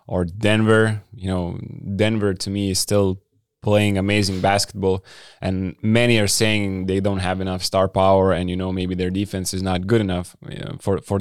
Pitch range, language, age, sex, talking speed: 95-110 Hz, English, 20-39, male, 195 wpm